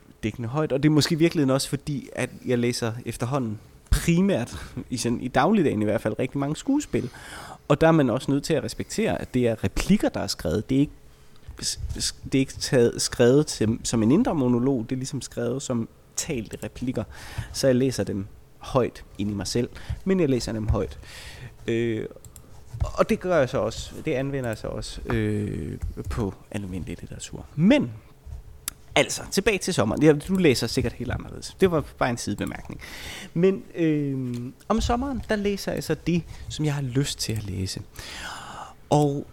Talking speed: 180 wpm